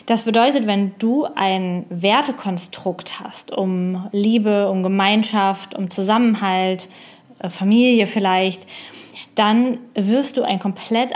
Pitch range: 190-225 Hz